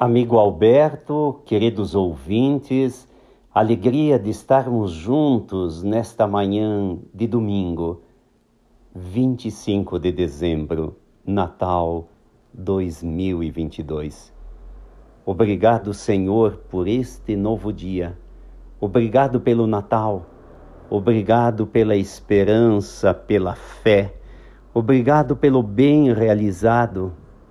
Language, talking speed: Portuguese, 75 wpm